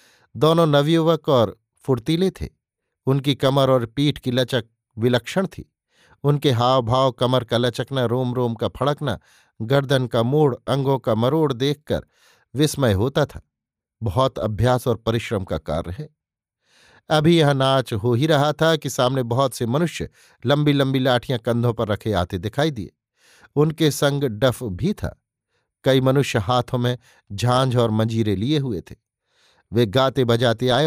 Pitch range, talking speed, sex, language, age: 115-145 Hz, 155 wpm, male, Hindi, 50-69